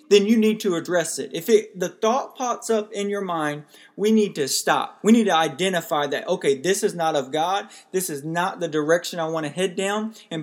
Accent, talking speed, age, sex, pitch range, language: American, 235 wpm, 20-39, male, 155-215 Hz, English